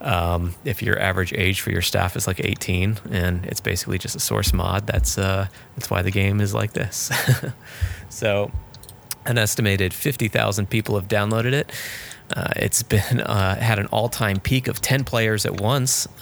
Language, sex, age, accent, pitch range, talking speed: English, male, 20-39, American, 100-115 Hz, 180 wpm